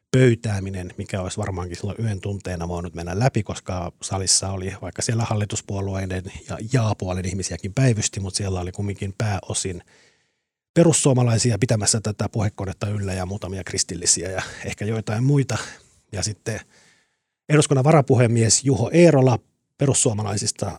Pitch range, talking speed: 95-115 Hz, 125 wpm